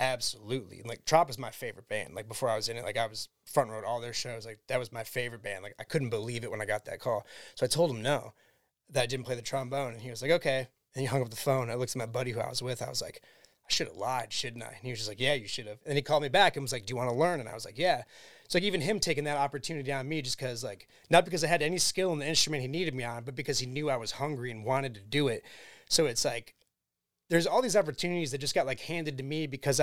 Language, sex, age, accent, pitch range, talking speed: English, male, 30-49, American, 125-155 Hz, 310 wpm